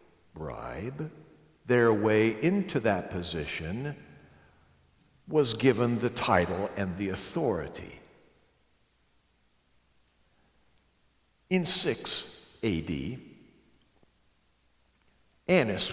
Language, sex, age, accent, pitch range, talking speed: English, male, 60-79, American, 100-145 Hz, 65 wpm